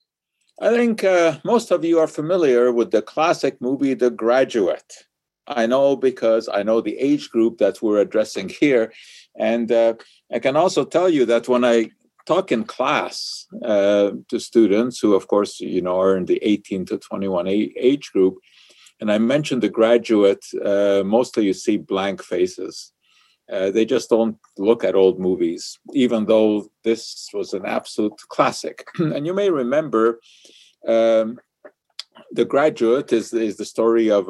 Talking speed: 165 wpm